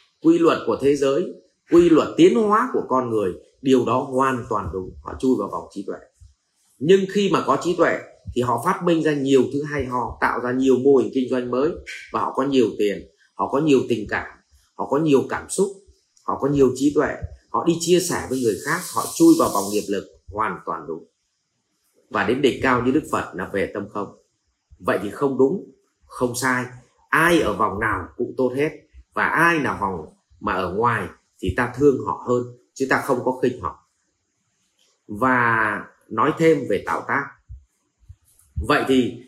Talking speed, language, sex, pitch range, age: 200 wpm, Vietnamese, male, 120-170 Hz, 30-49